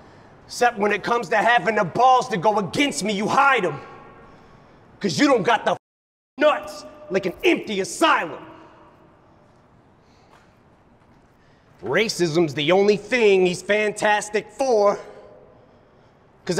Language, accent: English, American